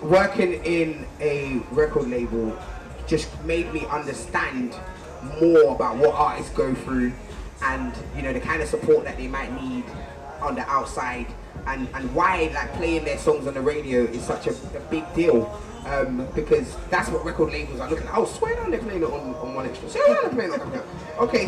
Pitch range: 155-235 Hz